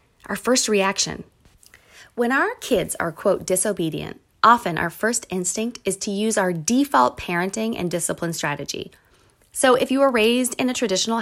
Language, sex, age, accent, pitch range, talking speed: English, female, 20-39, American, 185-245 Hz, 160 wpm